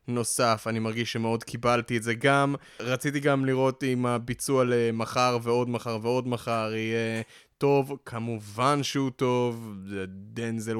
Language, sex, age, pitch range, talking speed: Hebrew, male, 20-39, 115-145 Hz, 135 wpm